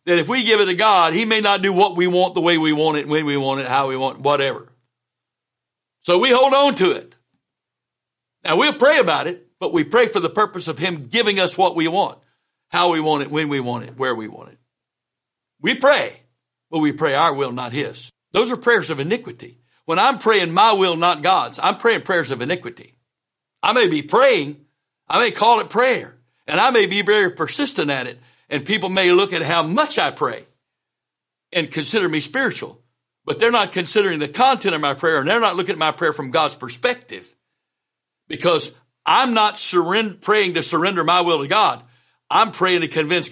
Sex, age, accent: male, 60-79, American